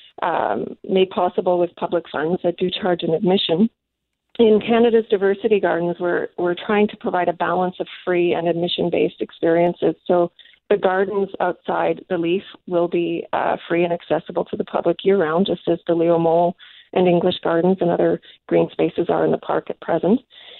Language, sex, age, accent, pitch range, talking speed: English, female, 40-59, American, 175-215 Hz, 180 wpm